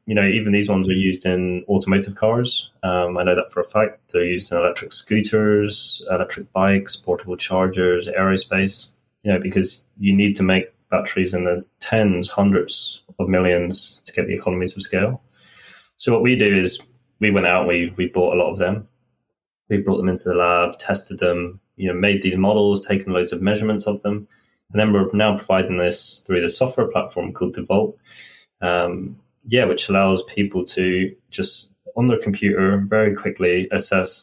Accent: British